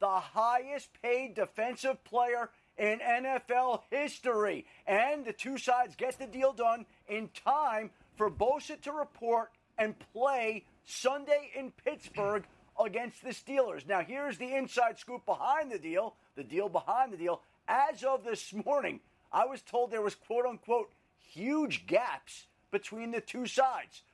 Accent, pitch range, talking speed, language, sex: American, 210-260 Hz, 145 wpm, English, male